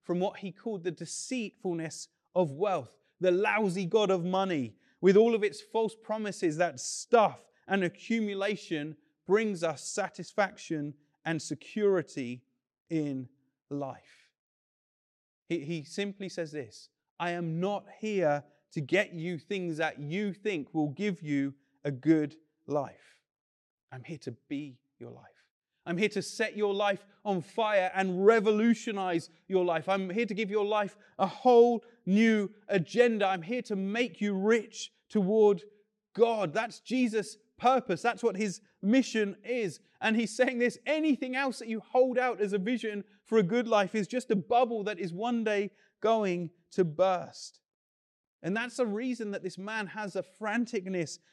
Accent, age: British, 30-49